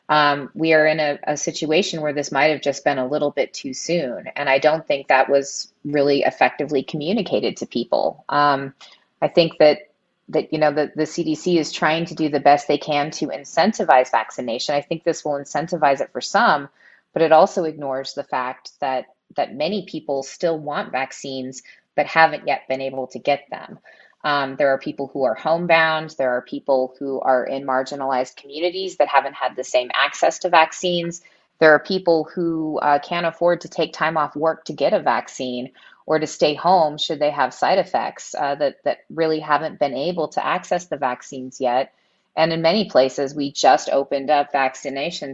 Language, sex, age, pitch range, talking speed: English, female, 20-39, 140-160 Hz, 195 wpm